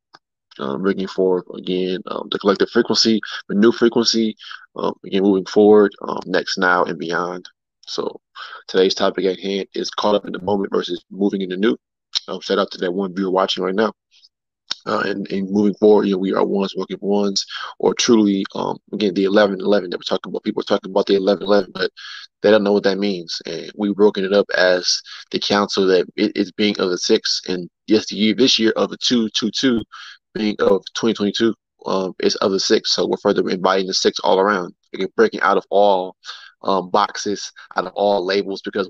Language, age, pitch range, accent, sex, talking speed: English, 20-39, 95-110 Hz, American, male, 210 wpm